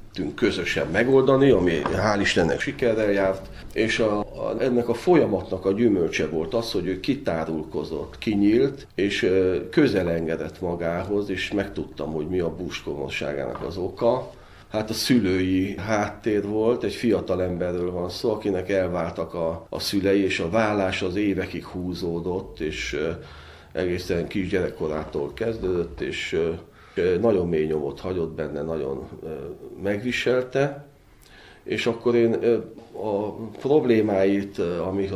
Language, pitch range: Hungarian, 90-110 Hz